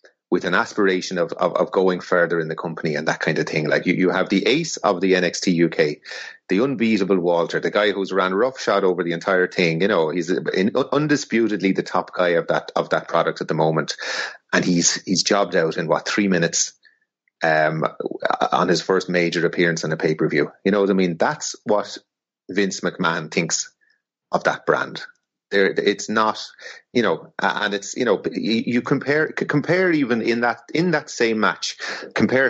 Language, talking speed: English, 195 wpm